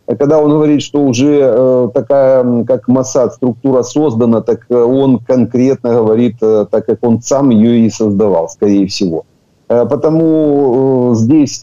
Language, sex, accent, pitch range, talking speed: Ukrainian, male, native, 110-135 Hz, 130 wpm